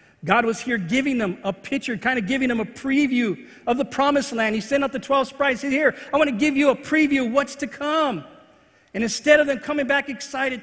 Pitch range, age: 170-250 Hz, 40-59